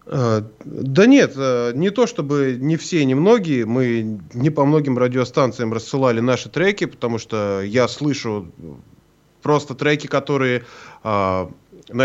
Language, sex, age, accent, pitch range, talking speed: Russian, male, 20-39, native, 120-160 Hz, 125 wpm